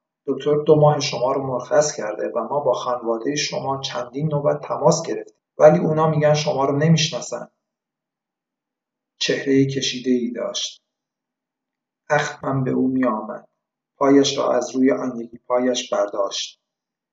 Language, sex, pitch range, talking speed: Persian, male, 125-150 Hz, 135 wpm